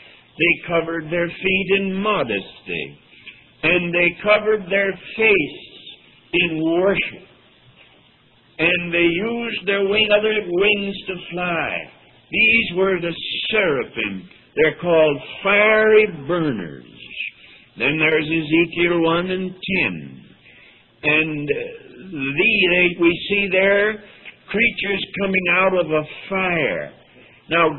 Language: English